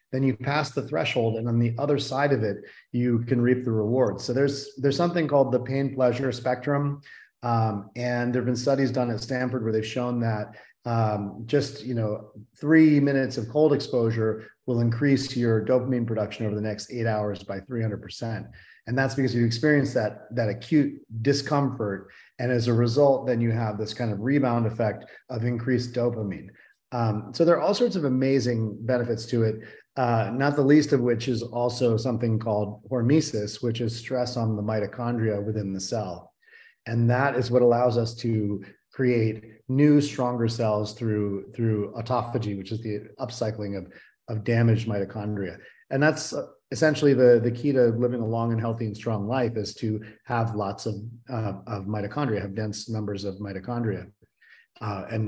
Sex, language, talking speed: male, English, 180 wpm